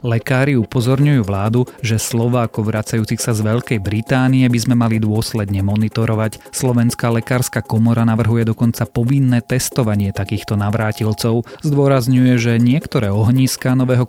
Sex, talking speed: male, 125 wpm